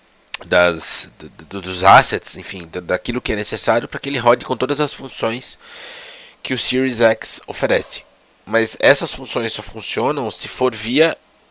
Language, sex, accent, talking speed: Portuguese, male, Brazilian, 145 wpm